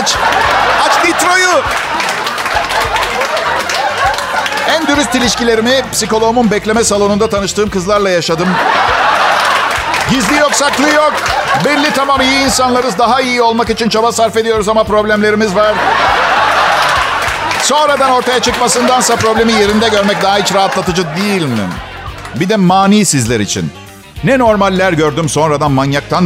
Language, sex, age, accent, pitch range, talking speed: Turkish, male, 50-69, native, 160-250 Hz, 115 wpm